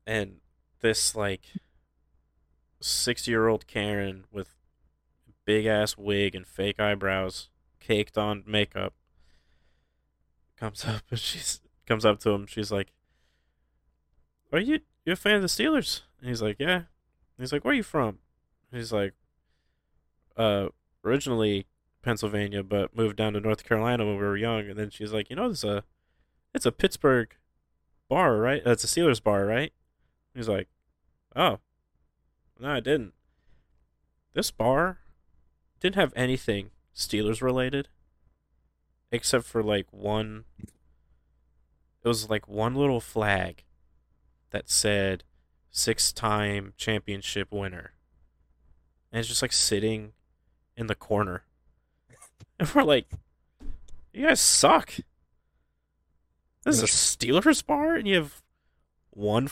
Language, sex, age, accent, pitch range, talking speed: English, male, 20-39, American, 70-110 Hz, 135 wpm